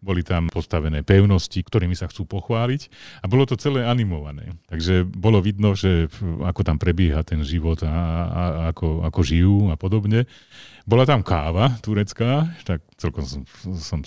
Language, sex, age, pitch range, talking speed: Slovak, male, 40-59, 85-105 Hz, 150 wpm